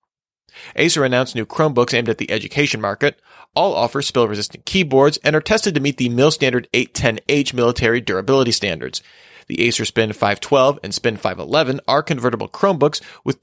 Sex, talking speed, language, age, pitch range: male, 165 wpm, English, 30-49, 110-140 Hz